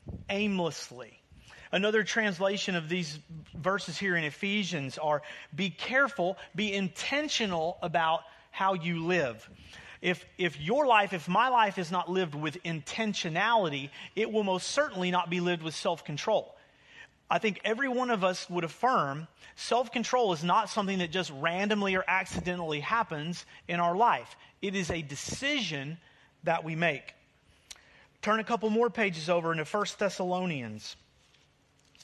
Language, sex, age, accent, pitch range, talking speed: English, male, 40-59, American, 165-210 Hz, 140 wpm